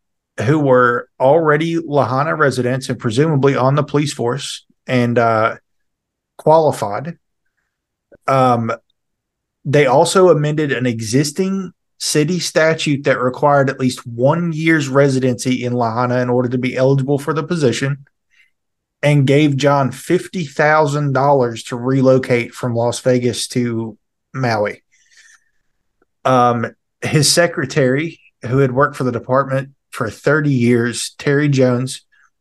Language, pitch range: English, 125-150 Hz